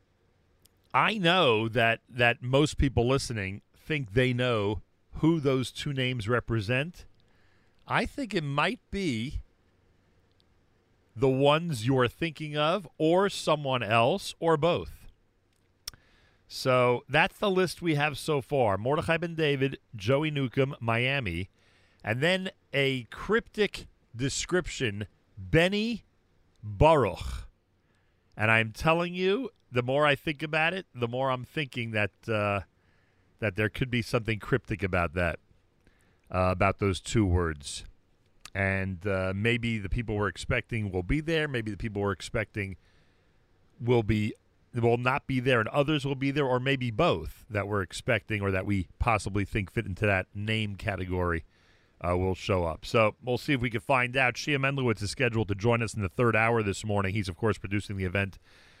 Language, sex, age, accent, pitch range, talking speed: English, male, 40-59, American, 95-135 Hz, 155 wpm